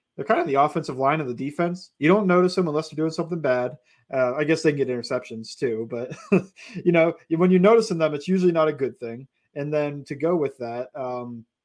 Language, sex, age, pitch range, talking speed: English, male, 30-49, 130-165 Hz, 230 wpm